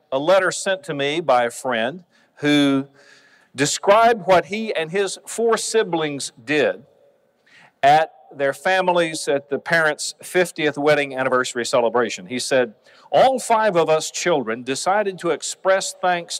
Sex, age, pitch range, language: male, 40-59, 130-190 Hz, English